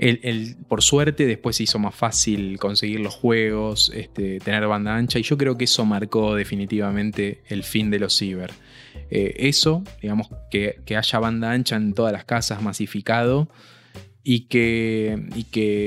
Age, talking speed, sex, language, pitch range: 20-39, 155 wpm, male, Spanish, 105-120 Hz